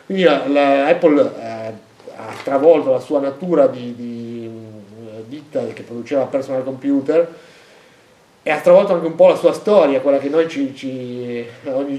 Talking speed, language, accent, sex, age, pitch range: 145 wpm, Italian, native, male, 30-49, 140-175 Hz